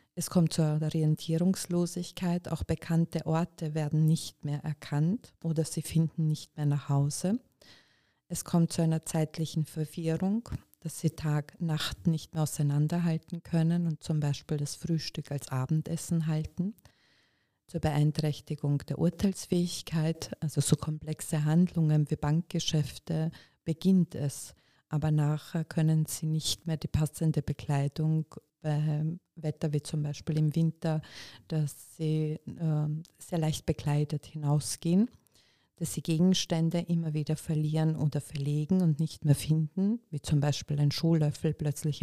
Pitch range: 150-165 Hz